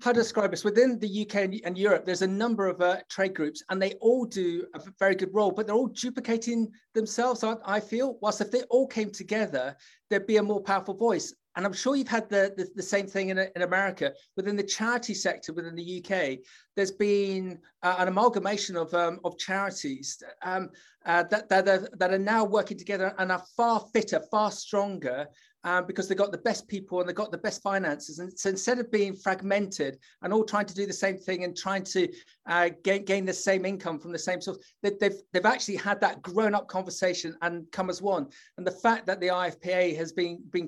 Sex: male